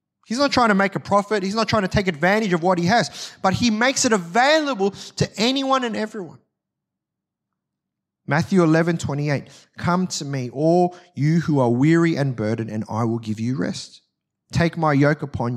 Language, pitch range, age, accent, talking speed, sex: English, 115-160 Hz, 20-39, Australian, 195 wpm, male